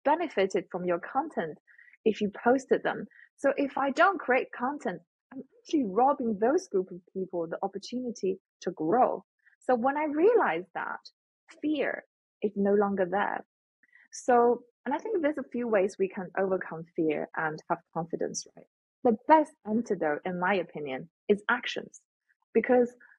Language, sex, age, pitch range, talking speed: English, female, 20-39, 190-260 Hz, 155 wpm